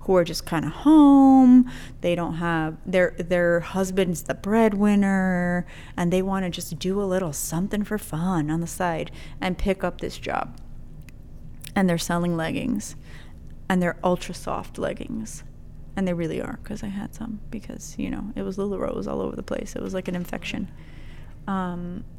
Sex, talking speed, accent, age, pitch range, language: female, 180 wpm, American, 30-49, 165-195 Hz, English